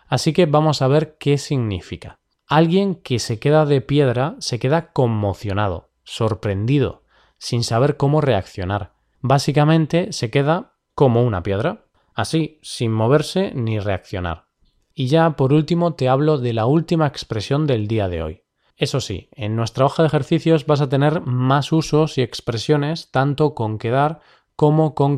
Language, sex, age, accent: Spanish, male, 20-39, Spanish